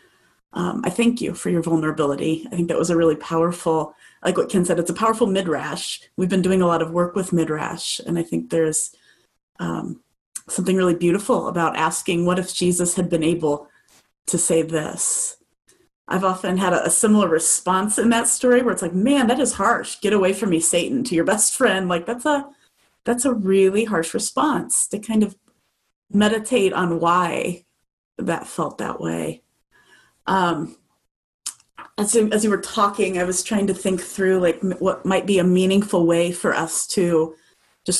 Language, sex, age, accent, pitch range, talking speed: English, female, 30-49, American, 170-215 Hz, 185 wpm